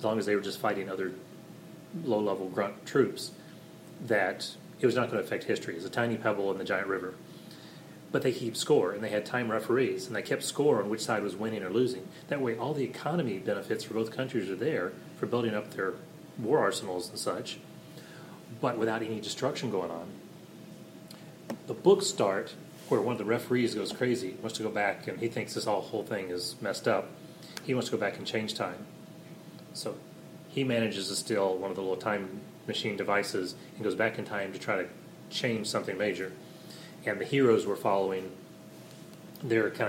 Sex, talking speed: male, 200 wpm